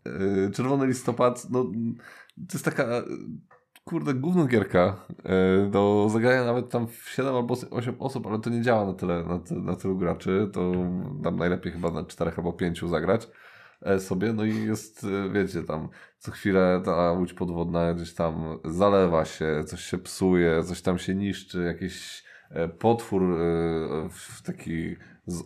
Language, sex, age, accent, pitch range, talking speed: Polish, male, 20-39, native, 85-100 Hz, 150 wpm